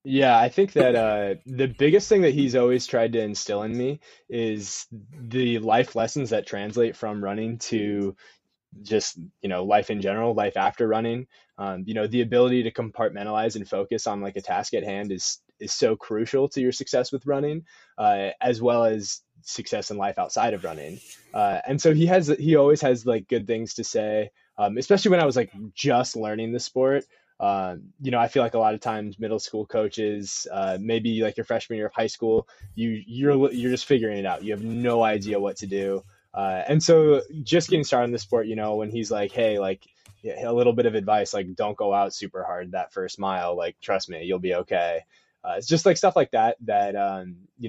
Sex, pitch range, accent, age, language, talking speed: male, 105-135 Hz, American, 20-39, English, 215 wpm